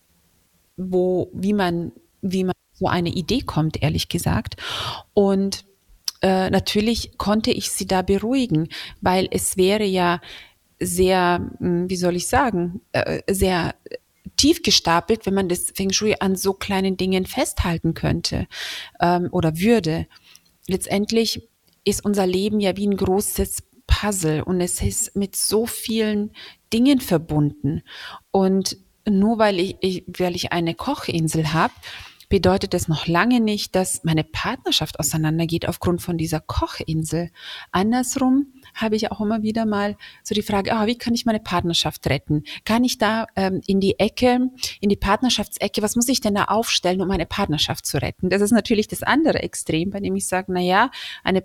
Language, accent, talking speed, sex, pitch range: German, German, 160 wpm, female, 175-215 Hz